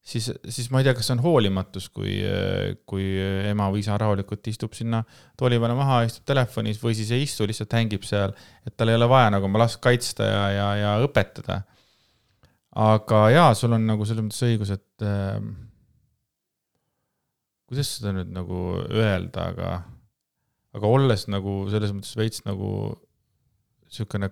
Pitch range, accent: 100-125 Hz, Finnish